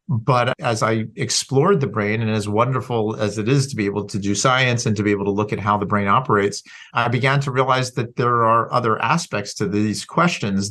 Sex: male